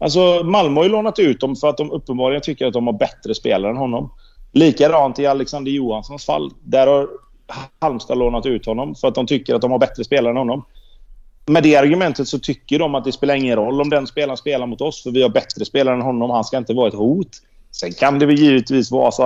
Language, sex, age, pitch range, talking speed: Swedish, male, 30-49, 120-155 Hz, 245 wpm